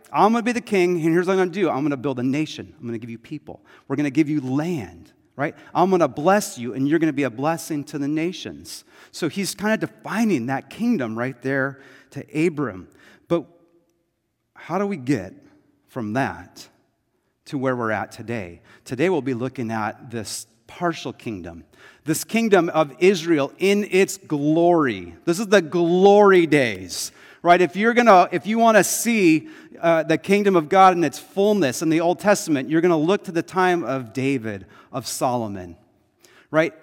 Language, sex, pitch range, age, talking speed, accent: English, male, 135-195 Hz, 30-49, 200 wpm, American